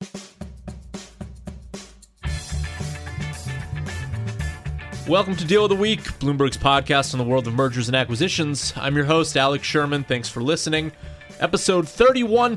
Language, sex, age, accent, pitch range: English, male, 30-49, American, 120-170 Hz